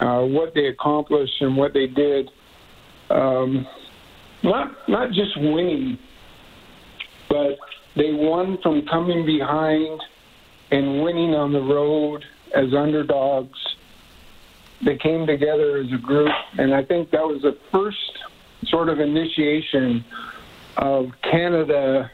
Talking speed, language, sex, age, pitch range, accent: 120 wpm, English, male, 50-69, 135-160 Hz, American